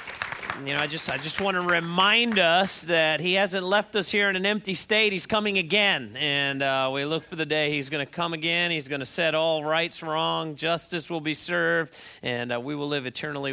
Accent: American